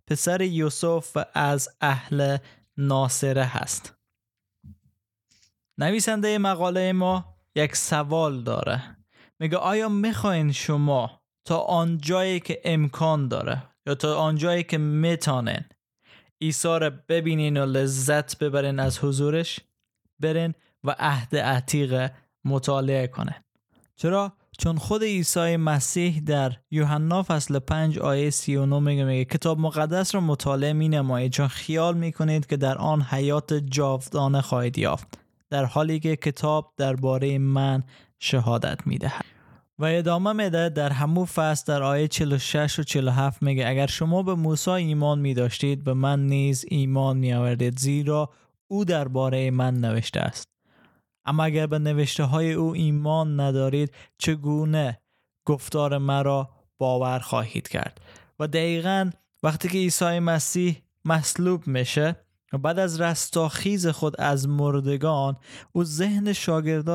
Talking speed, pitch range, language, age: 125 wpm, 135-160 Hz, Persian, 20-39